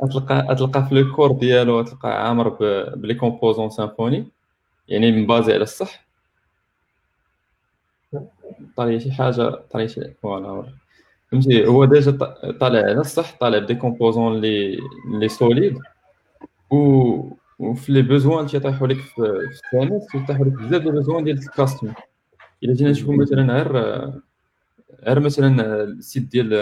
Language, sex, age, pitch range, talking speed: Arabic, male, 20-39, 115-140 Hz, 120 wpm